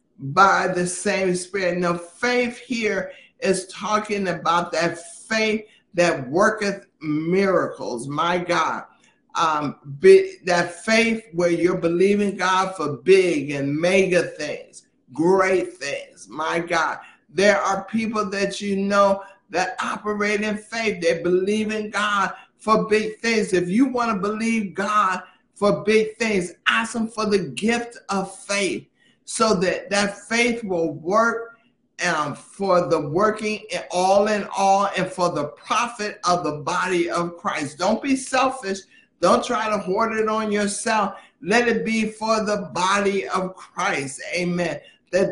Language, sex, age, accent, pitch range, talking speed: English, male, 60-79, American, 180-215 Hz, 140 wpm